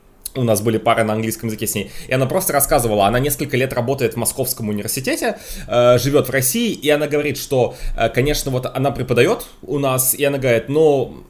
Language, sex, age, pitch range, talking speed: Russian, male, 20-39, 115-145 Hz, 195 wpm